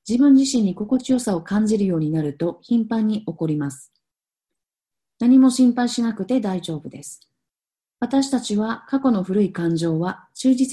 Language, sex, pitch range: Japanese, female, 170-245 Hz